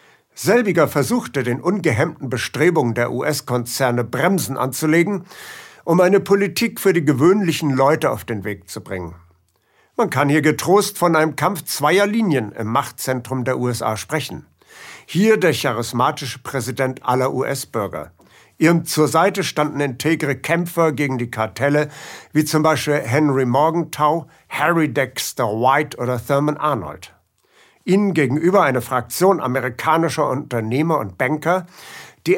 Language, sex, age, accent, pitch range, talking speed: German, male, 60-79, German, 130-170 Hz, 130 wpm